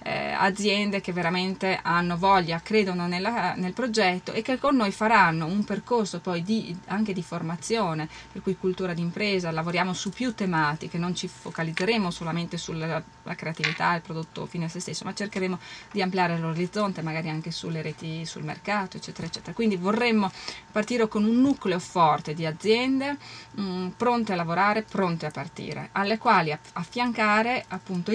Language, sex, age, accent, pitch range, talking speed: Italian, female, 20-39, native, 165-210 Hz, 165 wpm